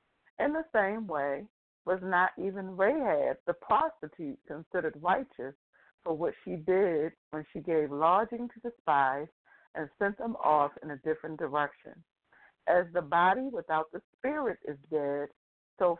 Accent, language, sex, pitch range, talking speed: American, English, female, 150-175 Hz, 150 wpm